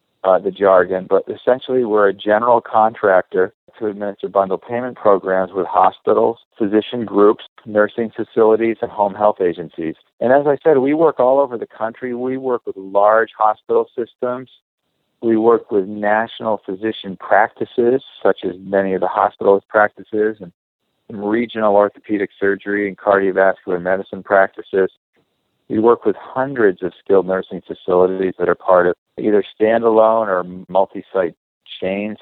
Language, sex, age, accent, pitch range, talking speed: English, male, 50-69, American, 100-125 Hz, 145 wpm